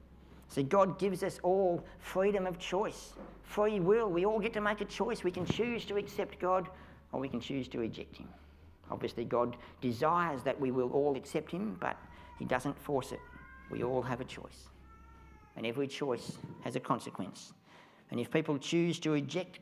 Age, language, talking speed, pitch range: 60-79, English, 185 wpm, 115-155 Hz